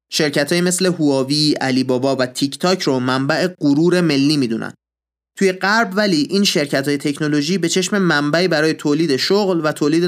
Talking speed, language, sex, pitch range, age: 175 wpm, Persian, male, 130-180 Hz, 30-49